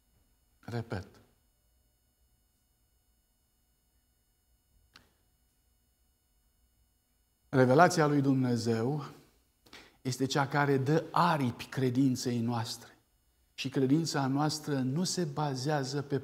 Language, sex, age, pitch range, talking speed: Romanian, male, 50-69, 100-140 Hz, 65 wpm